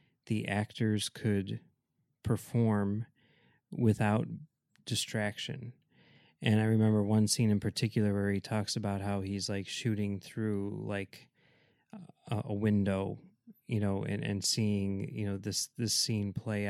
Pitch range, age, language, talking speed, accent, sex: 100-110 Hz, 20-39, English, 130 wpm, American, male